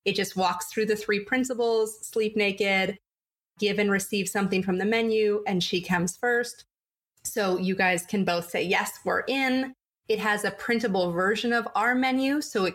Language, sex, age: English, female, 20-39